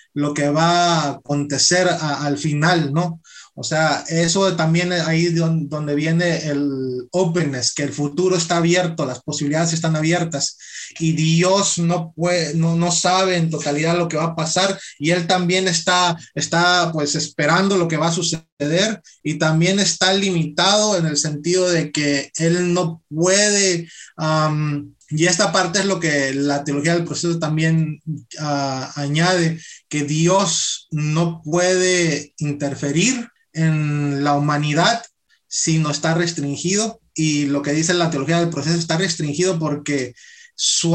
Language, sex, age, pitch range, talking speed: English, male, 30-49, 150-180 Hz, 150 wpm